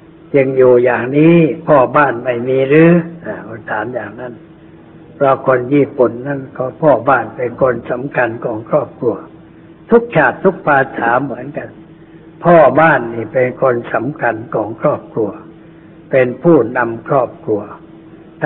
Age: 60-79